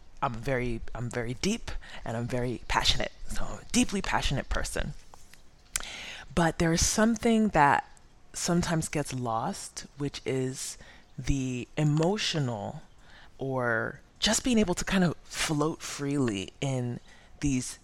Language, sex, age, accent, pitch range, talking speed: English, female, 20-39, American, 115-145 Hz, 120 wpm